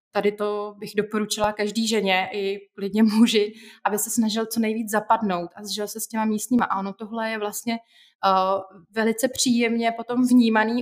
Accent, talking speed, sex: native, 165 wpm, female